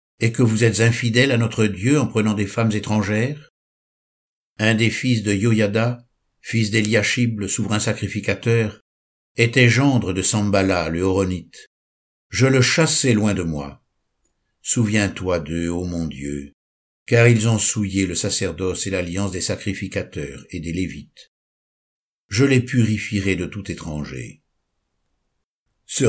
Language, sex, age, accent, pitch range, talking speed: French, male, 60-79, French, 95-120 Hz, 140 wpm